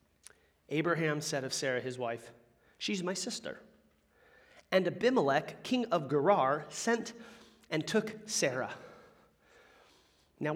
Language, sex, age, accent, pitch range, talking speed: English, male, 30-49, American, 180-285 Hz, 110 wpm